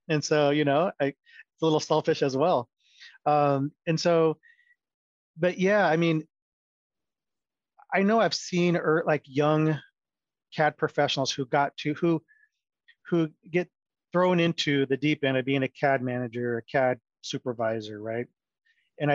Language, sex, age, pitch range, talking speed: English, male, 30-49, 130-165 Hz, 145 wpm